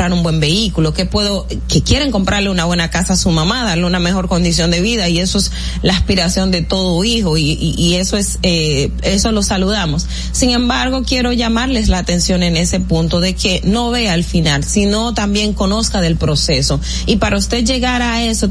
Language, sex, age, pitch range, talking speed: Spanish, female, 30-49, 180-225 Hz, 205 wpm